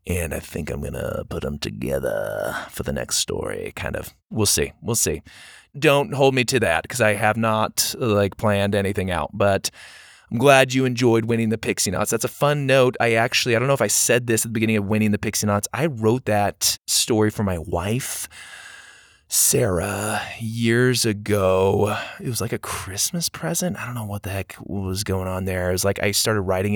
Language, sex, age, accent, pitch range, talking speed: English, male, 20-39, American, 100-120 Hz, 210 wpm